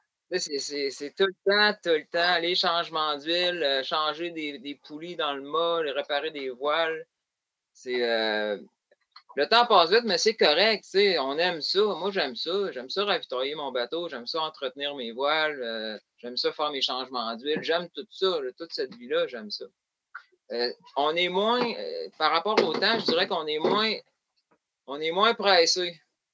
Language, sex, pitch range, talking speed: French, male, 130-195 Hz, 185 wpm